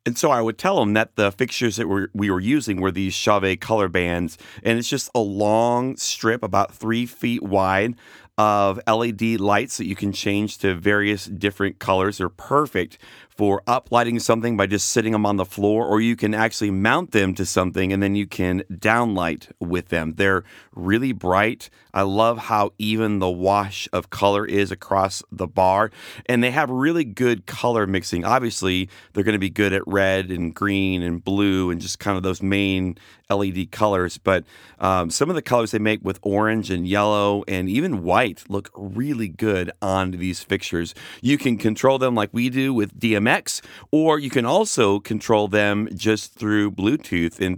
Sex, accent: male, American